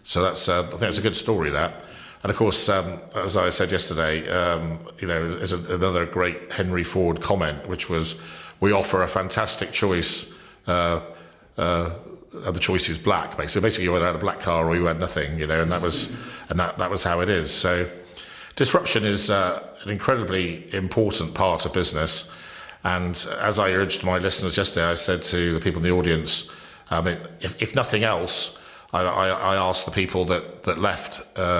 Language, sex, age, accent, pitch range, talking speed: English, male, 50-69, British, 85-100 Hz, 195 wpm